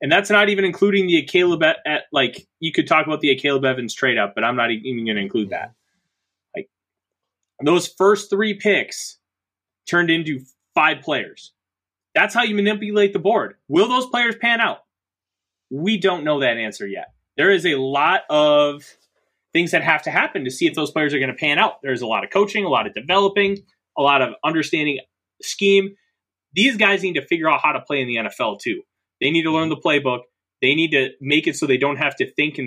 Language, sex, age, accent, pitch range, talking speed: English, male, 20-39, American, 130-195 Hz, 215 wpm